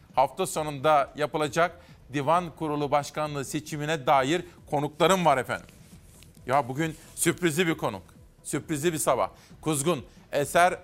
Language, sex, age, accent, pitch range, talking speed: Turkish, male, 40-59, native, 140-170 Hz, 115 wpm